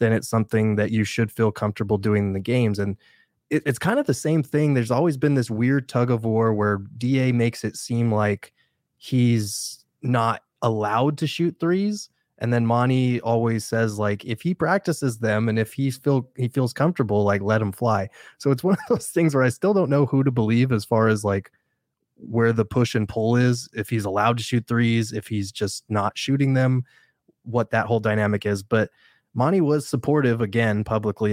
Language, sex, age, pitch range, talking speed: English, male, 20-39, 105-125 Hz, 210 wpm